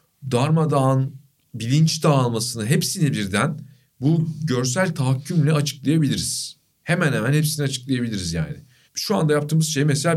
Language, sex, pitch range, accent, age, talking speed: Turkish, male, 125-160 Hz, native, 40-59, 110 wpm